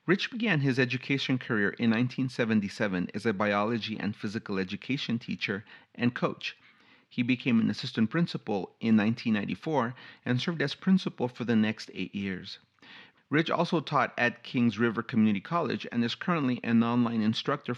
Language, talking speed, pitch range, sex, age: English, 155 wpm, 110-140 Hz, male, 40-59